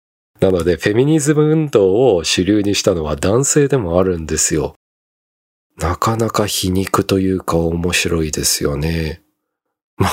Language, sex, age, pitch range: Japanese, male, 40-59, 75-110 Hz